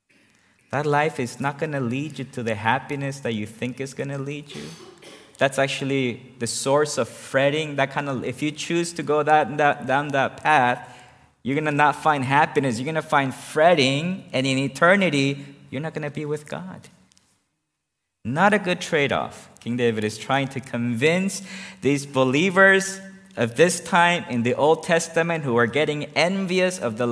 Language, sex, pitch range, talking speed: English, male, 110-150 Hz, 185 wpm